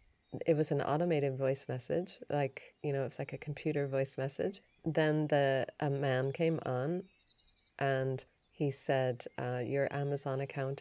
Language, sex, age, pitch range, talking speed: English, female, 30-49, 140-170 Hz, 155 wpm